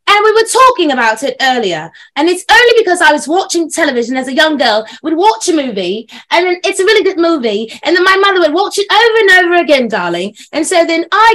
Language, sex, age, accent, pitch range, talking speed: English, female, 20-39, British, 255-375 Hz, 245 wpm